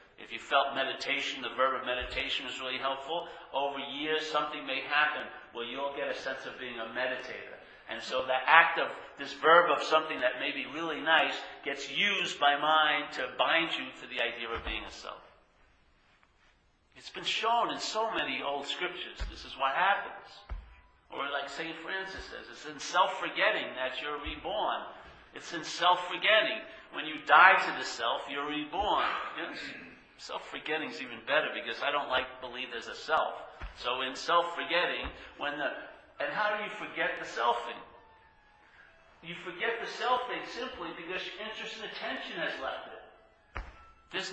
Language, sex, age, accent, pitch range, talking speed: English, male, 50-69, American, 130-185 Hz, 170 wpm